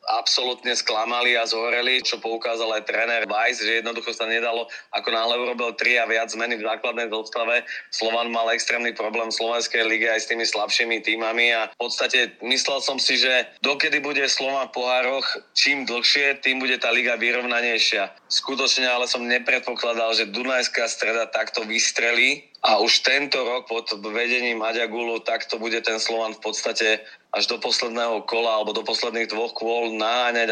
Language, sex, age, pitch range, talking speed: Slovak, male, 30-49, 110-120 Hz, 170 wpm